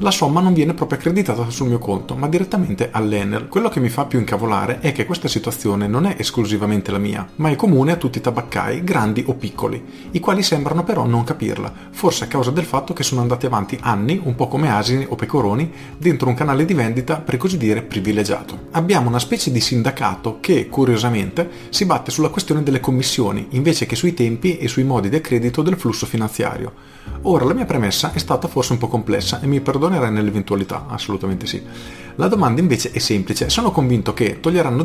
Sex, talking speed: male, 205 wpm